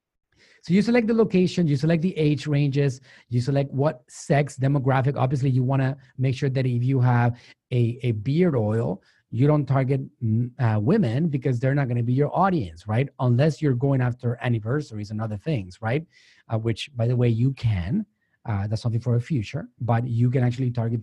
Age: 30-49